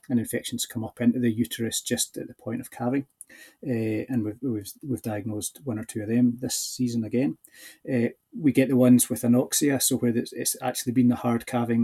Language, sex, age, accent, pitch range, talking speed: English, male, 30-49, British, 110-135 Hz, 220 wpm